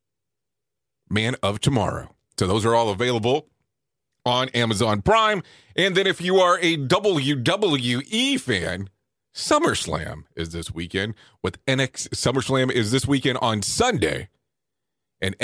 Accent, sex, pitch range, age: American, male, 115-160 Hz, 30-49